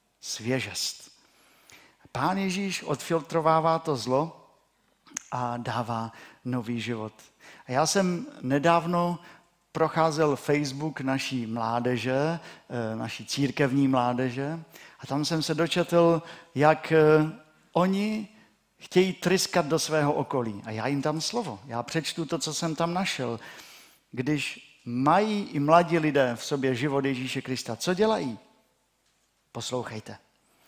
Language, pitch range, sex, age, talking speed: Czech, 130-160 Hz, male, 50-69, 115 wpm